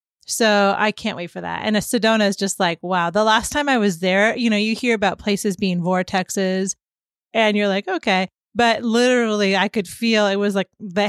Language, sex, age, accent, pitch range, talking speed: English, female, 30-49, American, 195-230 Hz, 210 wpm